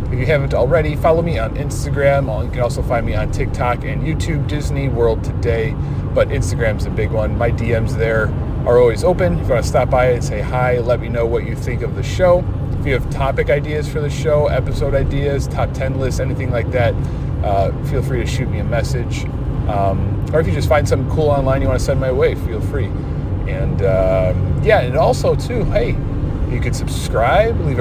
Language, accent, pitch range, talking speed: English, American, 105-130 Hz, 220 wpm